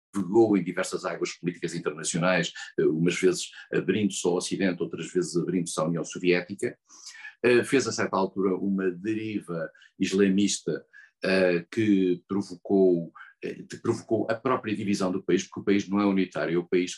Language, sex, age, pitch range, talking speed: Portuguese, male, 50-69, 90-115 Hz, 140 wpm